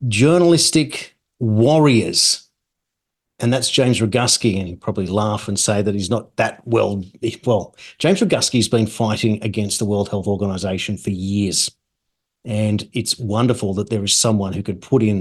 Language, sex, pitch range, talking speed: English, male, 105-130 Hz, 160 wpm